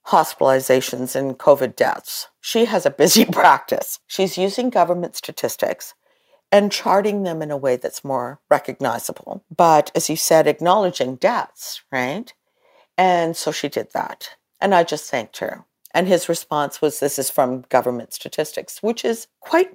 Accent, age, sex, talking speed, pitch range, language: American, 50-69, female, 155 wpm, 150-195 Hz, English